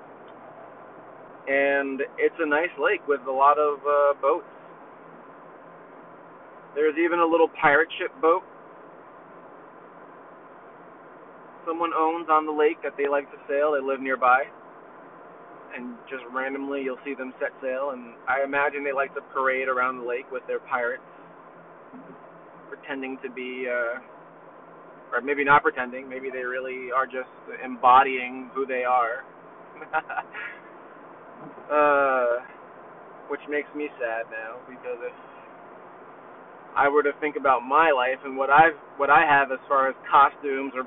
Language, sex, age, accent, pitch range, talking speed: English, male, 30-49, American, 130-150 Hz, 140 wpm